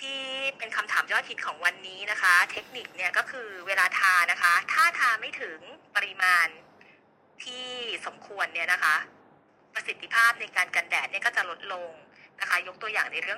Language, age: Thai, 20-39